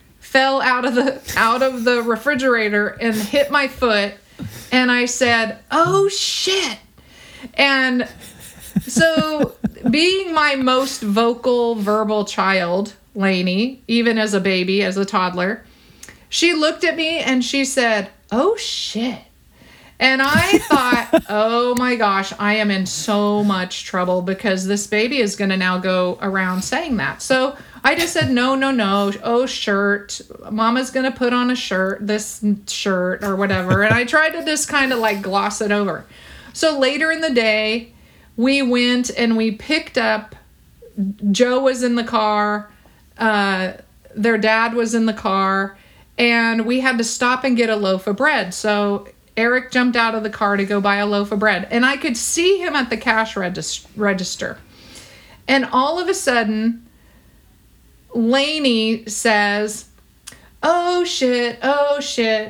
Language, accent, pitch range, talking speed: English, American, 210-270 Hz, 155 wpm